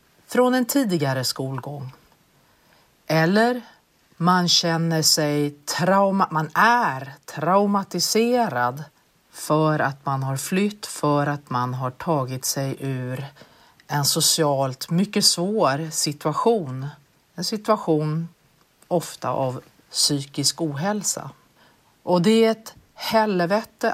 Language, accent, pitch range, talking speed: Swedish, native, 140-185 Hz, 100 wpm